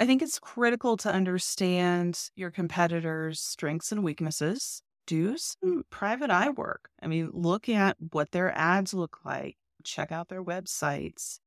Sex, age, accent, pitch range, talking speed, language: female, 30-49, American, 160-205 Hz, 150 wpm, English